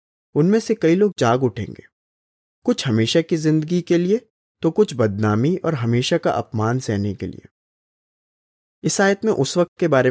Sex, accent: male, native